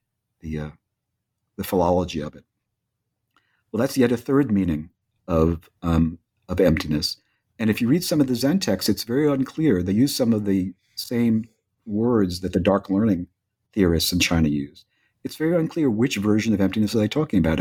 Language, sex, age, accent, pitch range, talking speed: English, male, 50-69, American, 90-110 Hz, 185 wpm